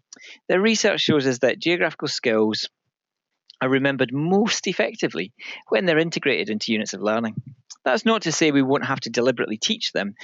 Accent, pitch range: British, 115-155 Hz